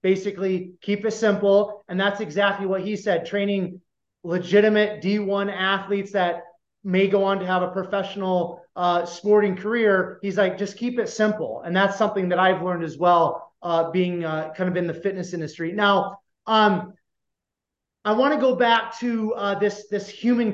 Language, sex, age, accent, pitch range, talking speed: English, male, 30-49, American, 190-225 Hz, 170 wpm